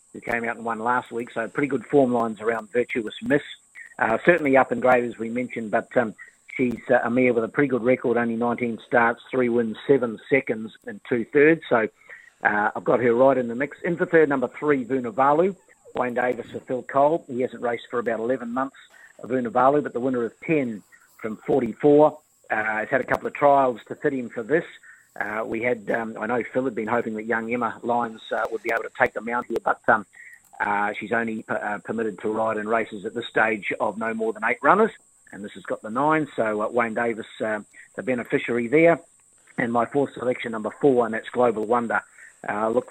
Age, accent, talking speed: 50-69, Australian, 225 wpm